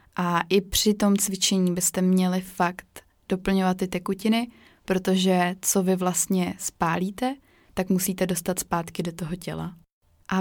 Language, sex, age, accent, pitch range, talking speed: Czech, female, 20-39, native, 180-195 Hz, 140 wpm